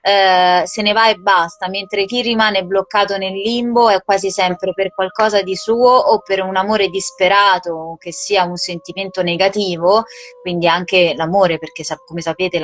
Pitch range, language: 175-210 Hz, Italian